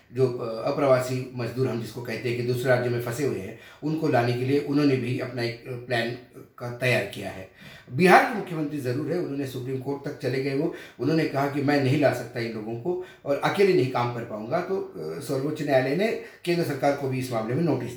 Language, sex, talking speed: Hindi, male, 225 wpm